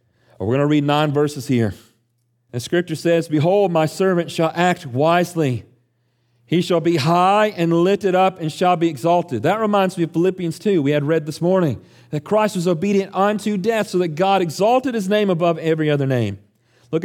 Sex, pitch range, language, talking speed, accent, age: male, 155-200 Hz, English, 195 wpm, American, 40-59